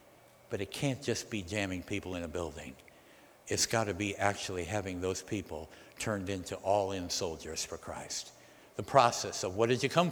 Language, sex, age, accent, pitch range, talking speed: English, male, 60-79, American, 110-180 Hz, 180 wpm